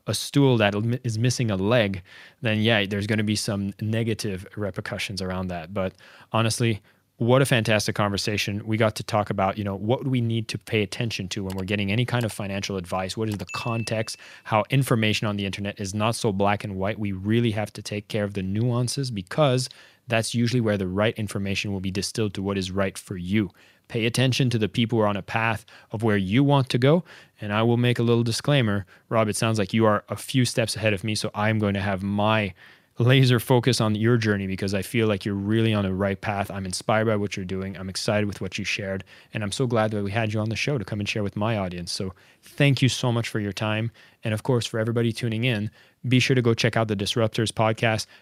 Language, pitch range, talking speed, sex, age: English, 100-120 Hz, 245 wpm, male, 20-39